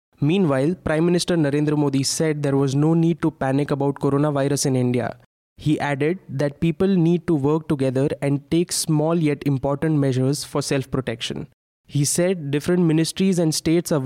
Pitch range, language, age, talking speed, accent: 135-155 Hz, English, 20-39, 165 wpm, Indian